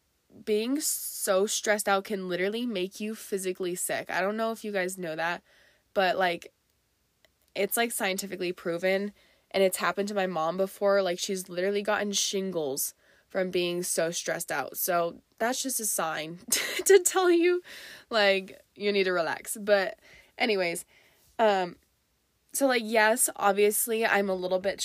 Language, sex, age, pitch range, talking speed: English, female, 20-39, 180-215 Hz, 155 wpm